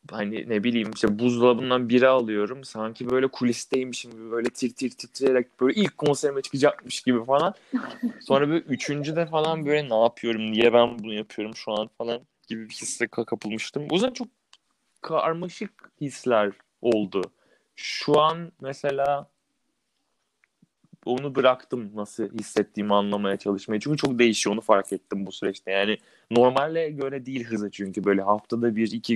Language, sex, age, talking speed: Turkish, male, 30-49, 145 wpm